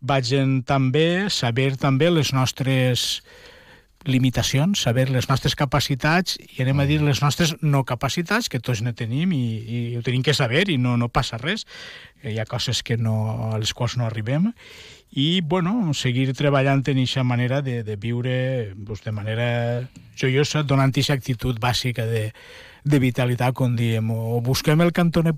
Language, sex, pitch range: Spanish, male, 120-140 Hz